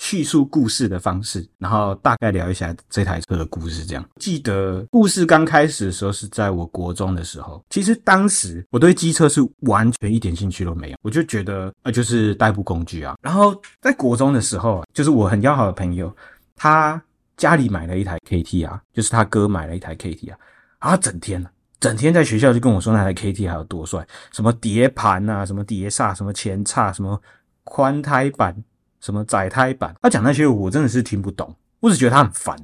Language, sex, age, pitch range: Chinese, male, 30-49, 90-130 Hz